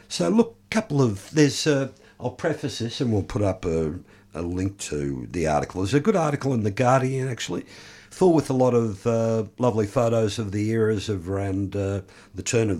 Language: English